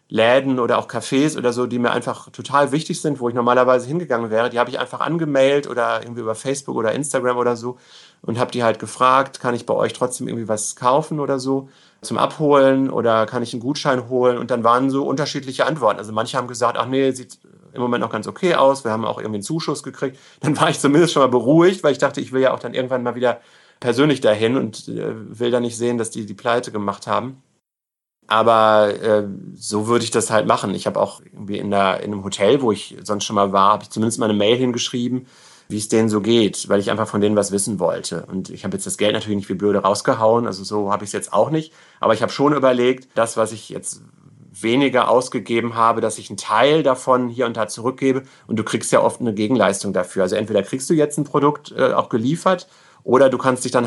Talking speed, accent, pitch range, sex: 240 wpm, German, 110-135 Hz, male